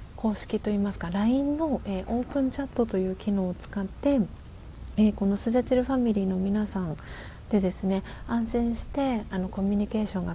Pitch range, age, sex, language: 185-225 Hz, 40-59, female, Japanese